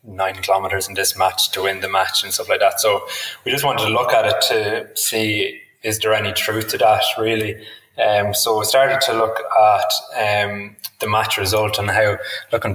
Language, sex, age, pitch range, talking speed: English, male, 20-39, 100-110 Hz, 205 wpm